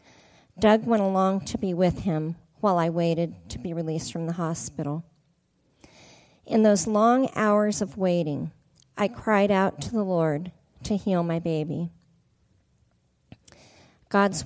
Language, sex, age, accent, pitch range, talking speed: English, female, 40-59, American, 165-205 Hz, 135 wpm